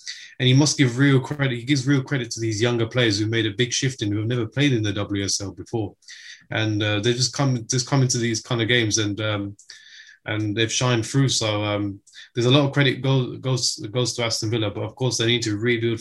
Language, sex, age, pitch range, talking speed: English, male, 20-39, 105-120 Hz, 250 wpm